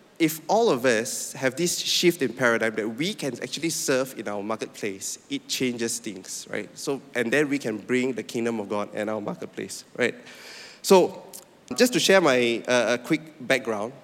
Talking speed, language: 185 wpm, English